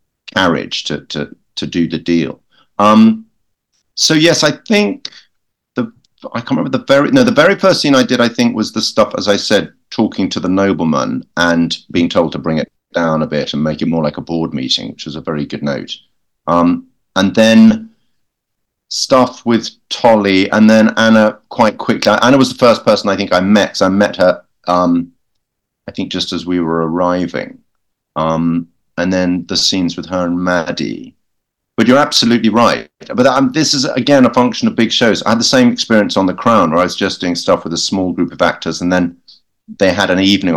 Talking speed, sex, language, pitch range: 210 wpm, male, English, 80-110 Hz